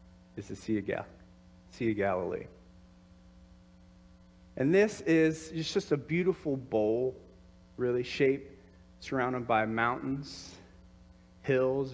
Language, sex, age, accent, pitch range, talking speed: English, male, 30-49, American, 90-140 Hz, 95 wpm